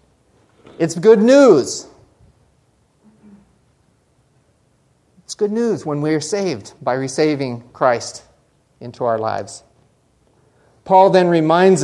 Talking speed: 90 wpm